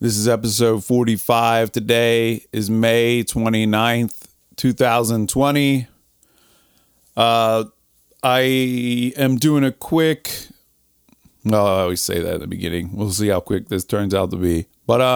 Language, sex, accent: English, male, American